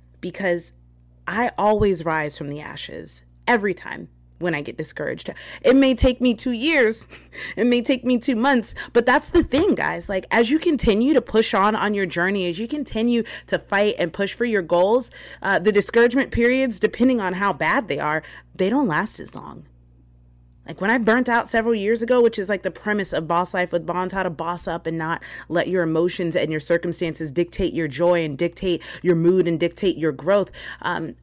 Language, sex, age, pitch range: English, female, 30-49, 170-230 Hz